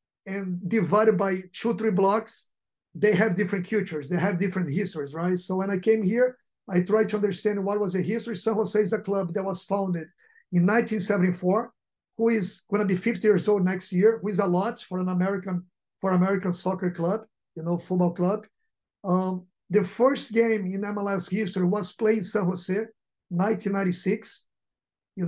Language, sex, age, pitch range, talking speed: English, male, 50-69, 185-215 Hz, 185 wpm